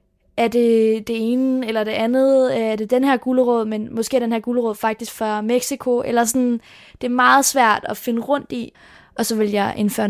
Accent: native